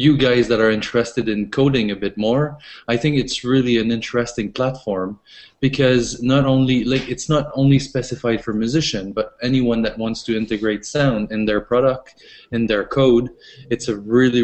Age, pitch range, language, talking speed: 20-39, 110-130 Hz, English, 180 wpm